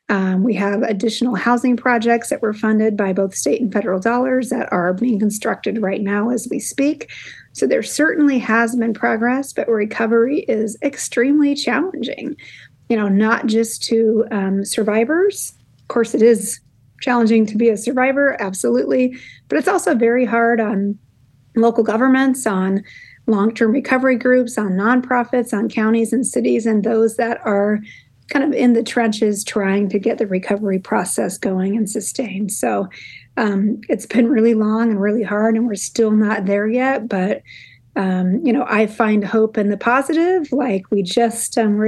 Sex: female